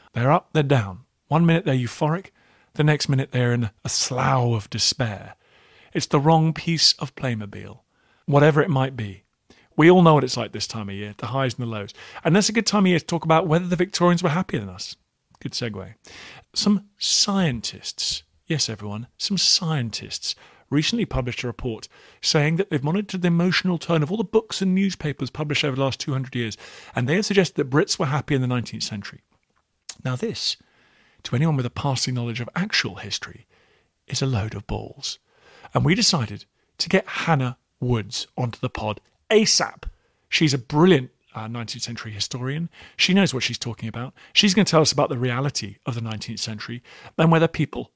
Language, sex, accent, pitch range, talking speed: English, male, British, 120-165 Hz, 195 wpm